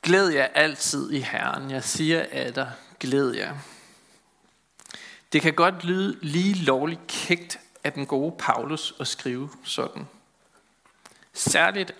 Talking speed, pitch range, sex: 130 wpm, 145-185 Hz, male